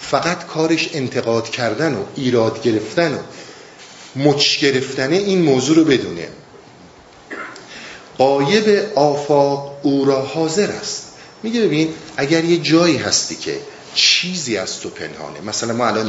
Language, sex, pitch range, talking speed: Persian, male, 120-170 Hz, 125 wpm